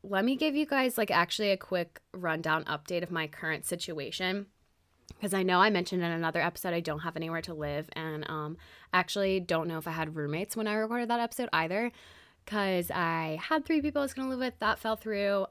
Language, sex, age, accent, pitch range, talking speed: English, female, 20-39, American, 170-230 Hz, 225 wpm